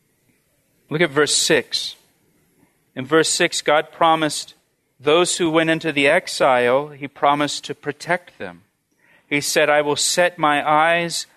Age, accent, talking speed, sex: 40-59, American, 145 wpm, male